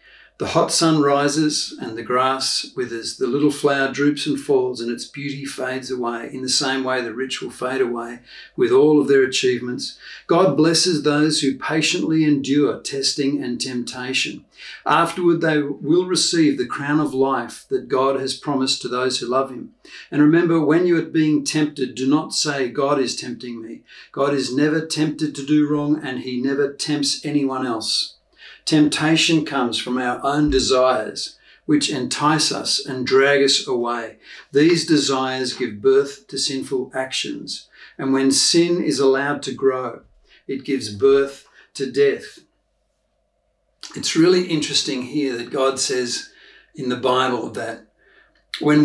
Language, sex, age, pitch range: English, male, 50-69, 130-150 Hz